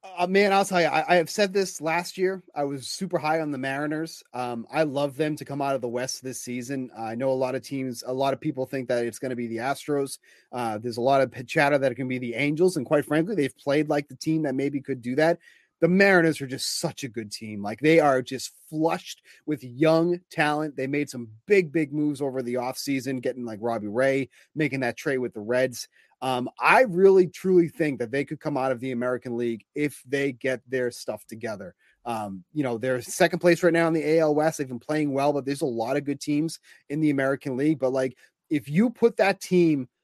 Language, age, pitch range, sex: English, 30-49, 130-170 Hz, male